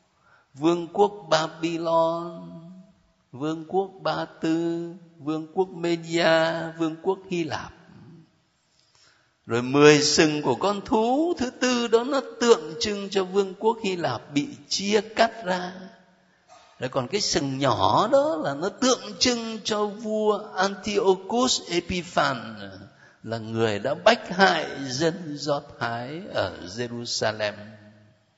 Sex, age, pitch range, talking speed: male, 60-79, 145-215 Hz, 125 wpm